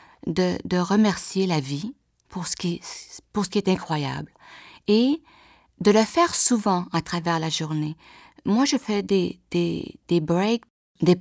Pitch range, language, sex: 160-210 Hz, English, female